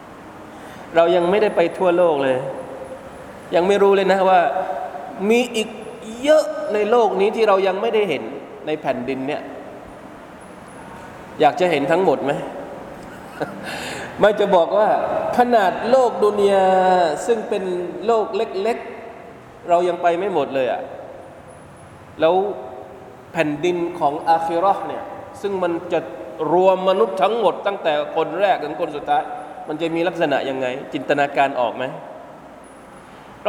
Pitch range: 155-210 Hz